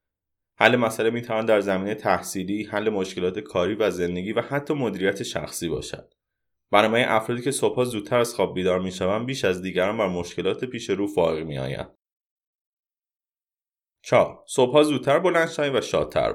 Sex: male